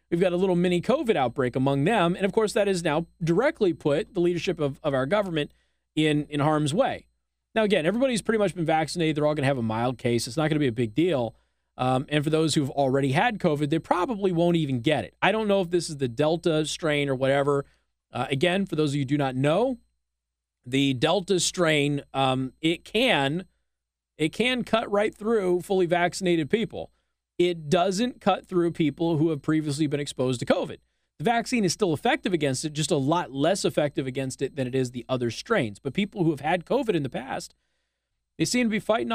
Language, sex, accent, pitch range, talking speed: English, male, American, 135-190 Hz, 220 wpm